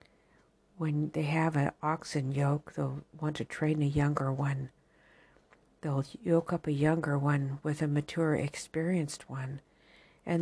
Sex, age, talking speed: female, 60-79, 145 wpm